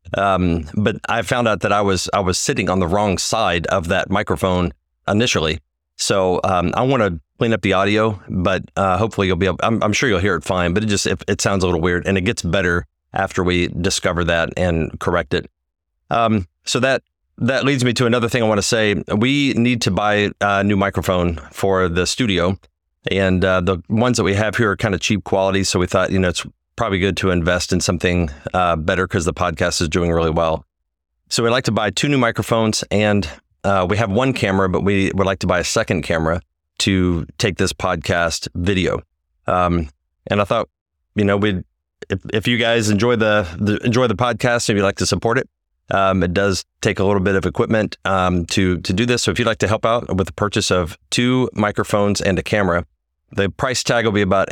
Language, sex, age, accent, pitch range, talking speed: English, male, 40-59, American, 85-105 Hz, 225 wpm